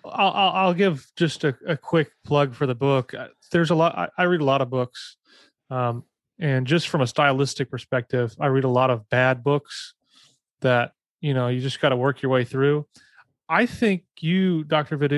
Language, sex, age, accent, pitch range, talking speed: English, male, 30-49, American, 125-150 Hz, 200 wpm